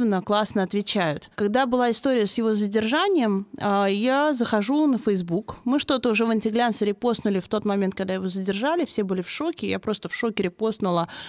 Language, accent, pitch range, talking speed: Russian, native, 200-260 Hz, 175 wpm